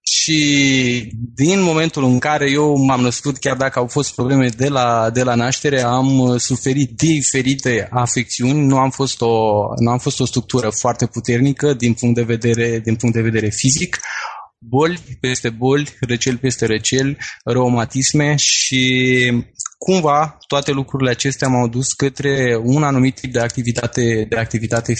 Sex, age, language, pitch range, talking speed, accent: male, 20-39, Romanian, 120-135 Hz, 150 wpm, native